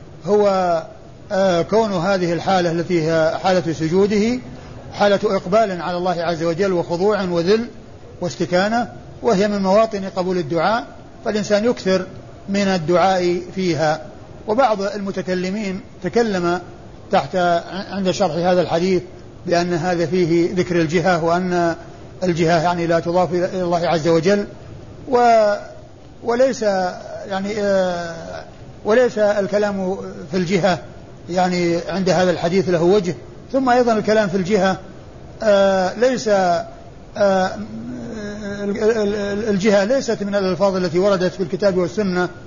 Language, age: Arabic, 60-79